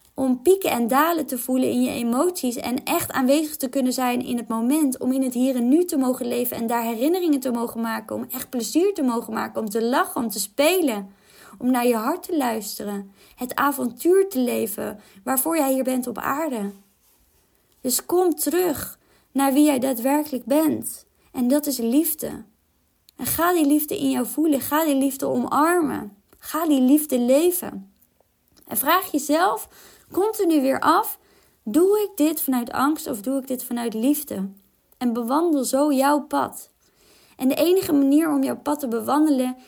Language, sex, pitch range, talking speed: Dutch, female, 235-295 Hz, 180 wpm